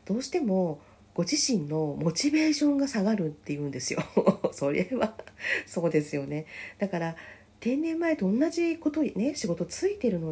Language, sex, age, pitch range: Japanese, female, 40-59, 145-240 Hz